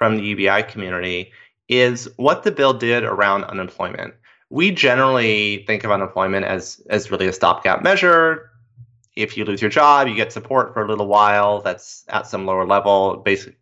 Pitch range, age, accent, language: 105-130 Hz, 30-49, American, English